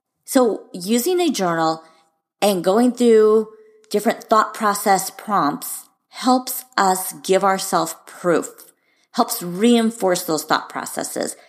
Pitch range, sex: 160-215 Hz, female